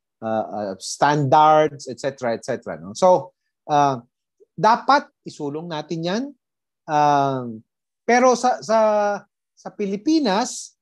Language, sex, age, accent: Filipino, male, 30-49, native